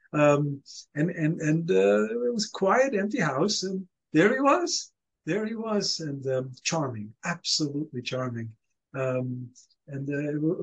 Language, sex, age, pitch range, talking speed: English, male, 50-69, 135-180 Hz, 145 wpm